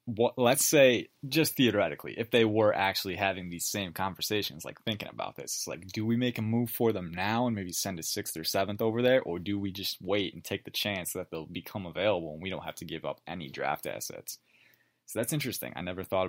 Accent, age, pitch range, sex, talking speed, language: American, 20-39, 85-105 Hz, male, 245 wpm, English